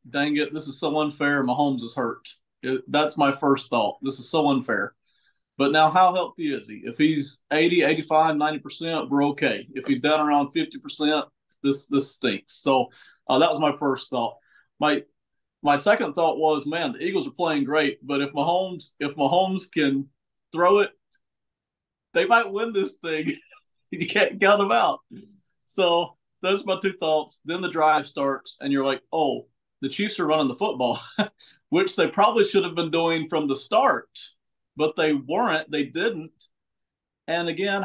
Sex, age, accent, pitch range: male, 40-59, American, 145-185 Hz